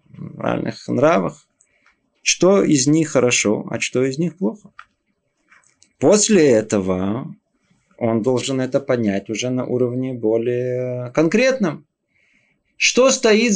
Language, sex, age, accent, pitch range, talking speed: Russian, male, 20-39, native, 115-170 Hz, 100 wpm